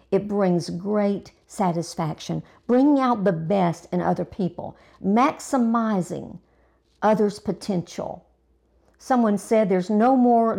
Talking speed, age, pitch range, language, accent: 110 wpm, 50-69, 185-225 Hz, English, American